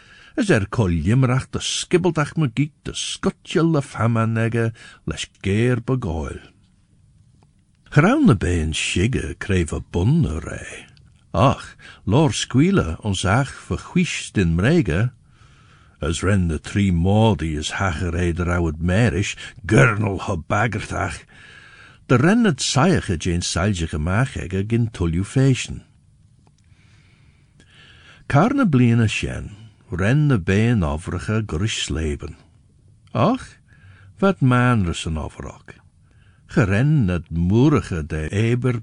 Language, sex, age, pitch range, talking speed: English, male, 60-79, 90-130 Hz, 95 wpm